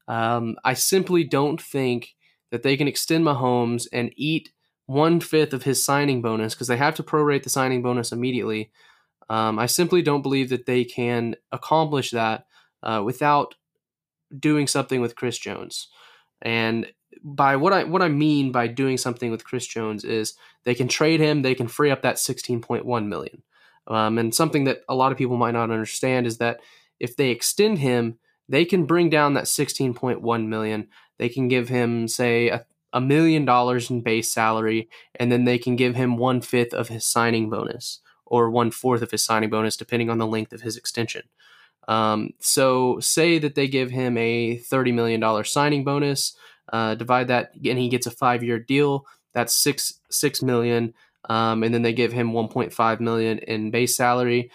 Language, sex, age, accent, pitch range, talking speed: English, male, 20-39, American, 115-135 Hz, 180 wpm